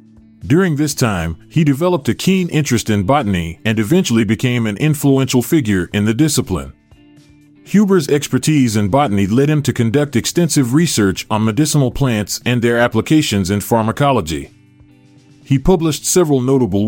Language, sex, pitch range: English, male, 110-145 Hz